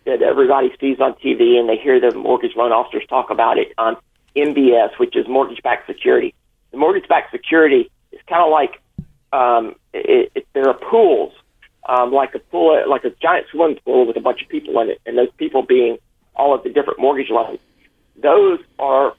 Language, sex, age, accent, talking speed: English, male, 50-69, American, 195 wpm